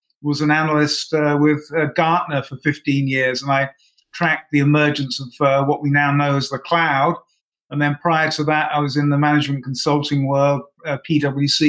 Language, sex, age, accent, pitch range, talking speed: English, male, 50-69, British, 150-175 Hz, 195 wpm